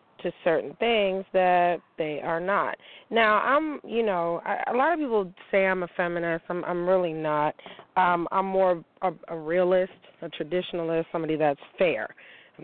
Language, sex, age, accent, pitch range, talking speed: English, female, 30-49, American, 160-180 Hz, 165 wpm